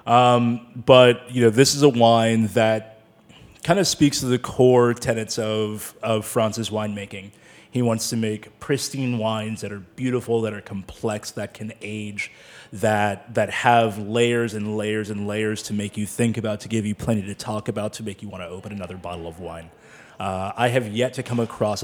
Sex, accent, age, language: male, American, 30-49, English